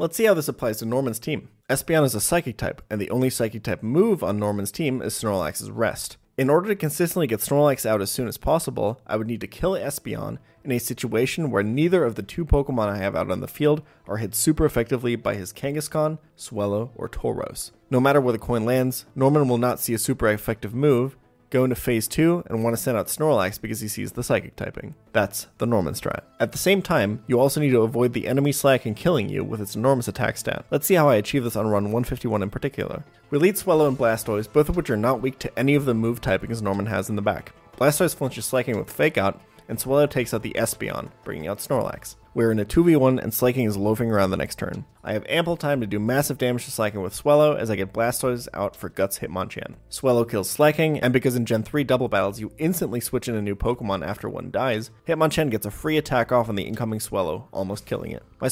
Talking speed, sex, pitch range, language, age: 240 wpm, male, 110-145 Hz, English, 30-49